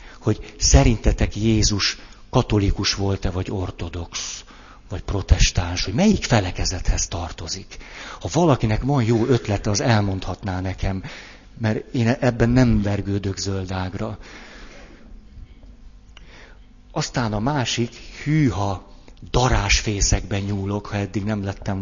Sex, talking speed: male, 100 wpm